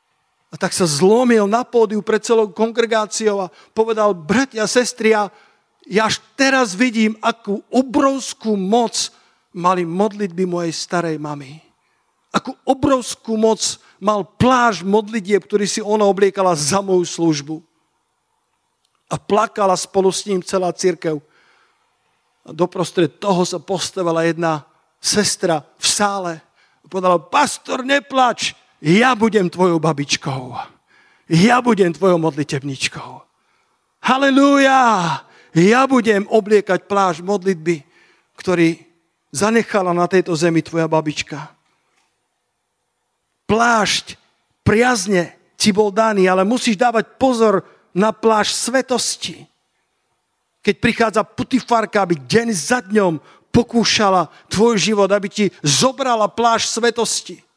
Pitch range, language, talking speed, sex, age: 175-230 Hz, Slovak, 110 wpm, male, 50-69